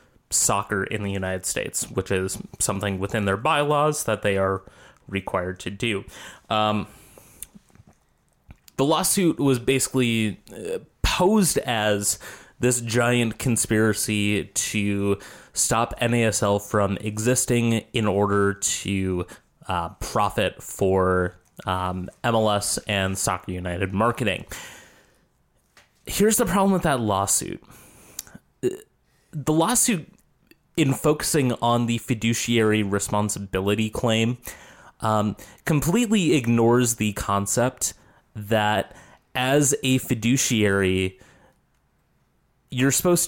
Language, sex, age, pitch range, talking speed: English, male, 20-39, 100-135 Hz, 95 wpm